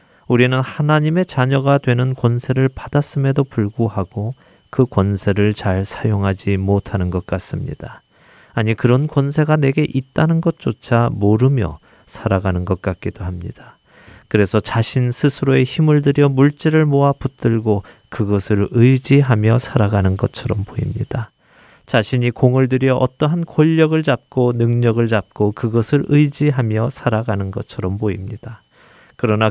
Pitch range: 110-140 Hz